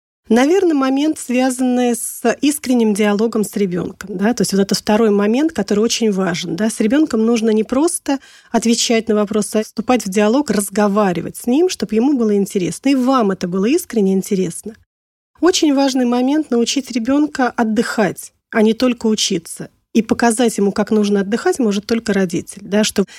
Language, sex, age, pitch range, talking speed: Russian, female, 30-49, 210-260 Hz, 170 wpm